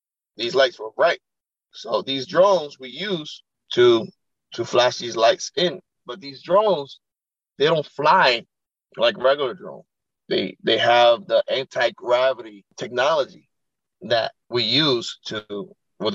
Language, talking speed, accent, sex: English, 130 wpm, American, male